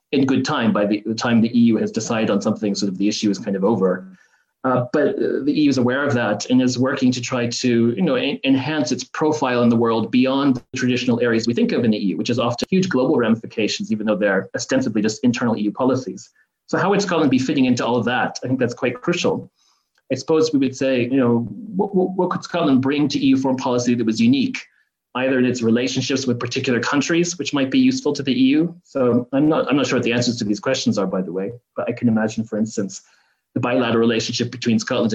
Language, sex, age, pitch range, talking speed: English, male, 30-49, 115-145 Hz, 240 wpm